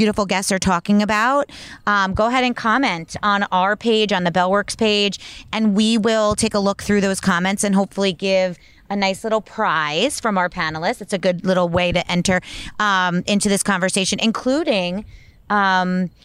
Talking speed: 180 wpm